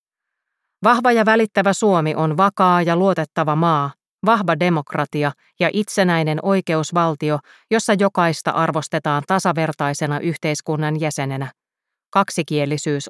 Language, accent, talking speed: Finnish, native, 95 wpm